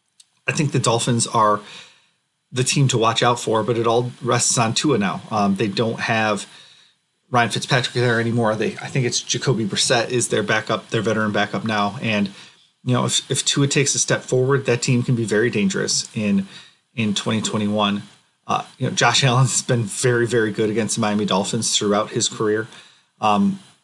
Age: 30-49